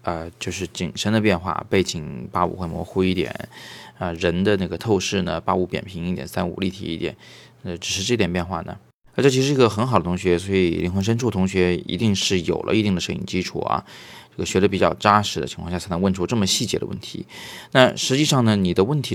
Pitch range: 90-110 Hz